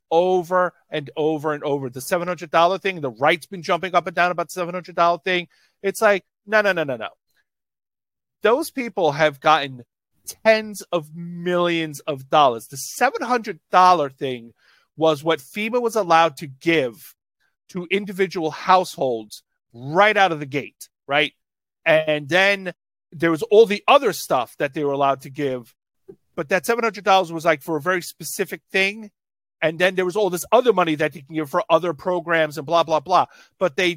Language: English